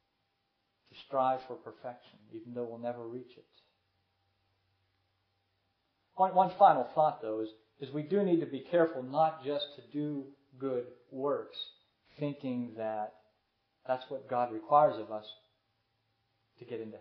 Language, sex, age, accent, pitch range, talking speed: English, male, 40-59, American, 105-135 Hz, 135 wpm